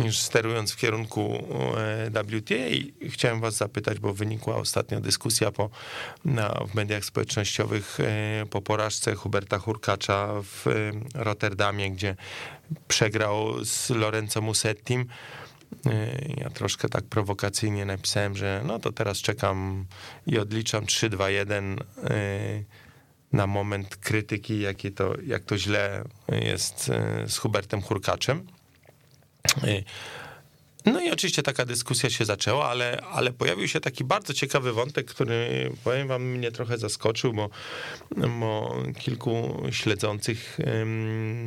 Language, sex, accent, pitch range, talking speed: Polish, male, native, 105-125 Hz, 110 wpm